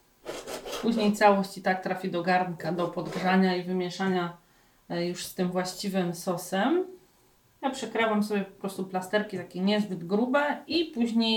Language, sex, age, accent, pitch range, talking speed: Polish, female, 30-49, native, 180-210 Hz, 145 wpm